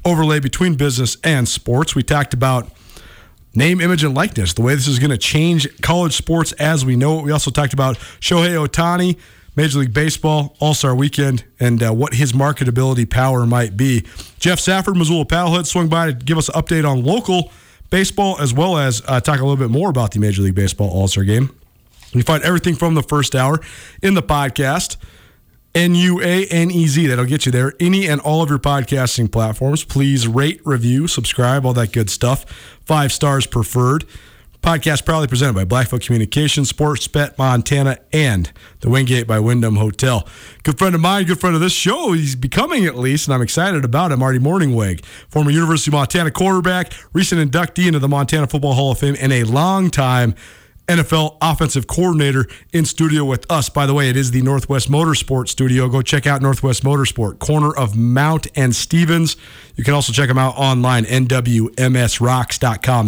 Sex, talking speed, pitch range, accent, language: male, 185 wpm, 125-160 Hz, American, English